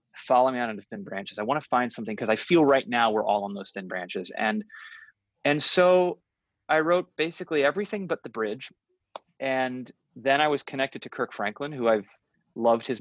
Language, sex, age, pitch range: English, male, 30-49, 105-155 Hz